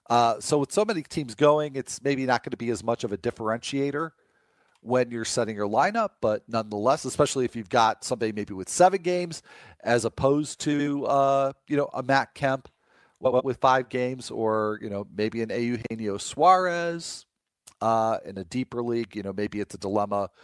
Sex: male